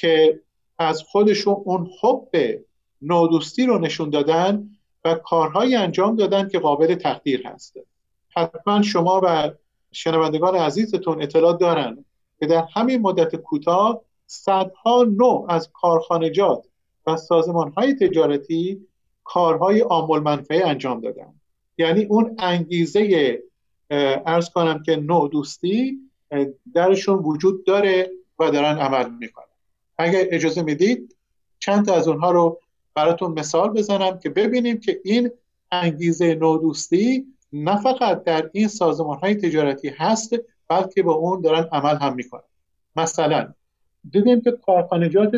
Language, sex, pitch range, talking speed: Persian, male, 160-205 Hz, 120 wpm